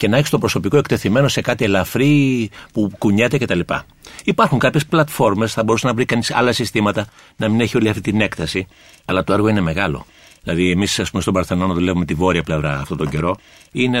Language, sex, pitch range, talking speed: Greek, male, 95-135 Hz, 210 wpm